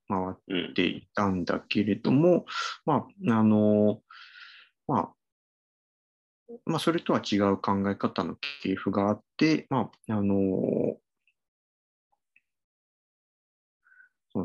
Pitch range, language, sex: 95-120 Hz, Japanese, male